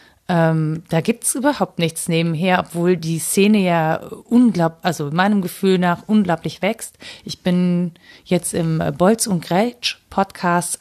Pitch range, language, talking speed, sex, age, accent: 175-215 Hz, German, 135 wpm, female, 30-49, German